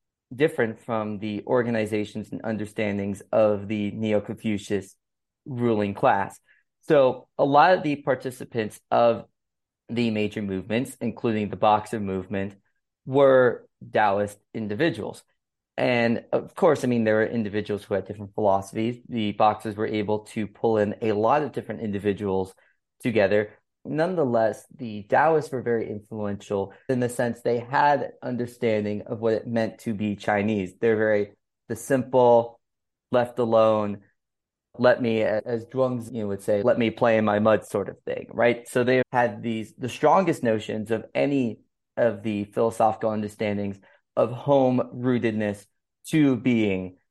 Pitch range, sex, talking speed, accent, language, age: 105-120 Hz, male, 145 wpm, American, English, 30-49